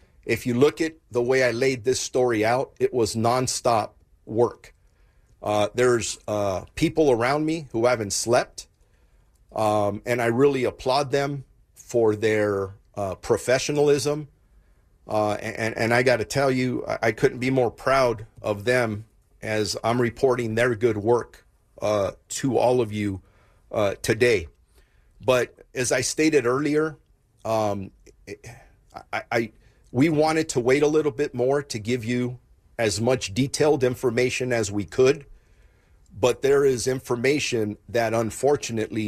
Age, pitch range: 40-59, 105-130 Hz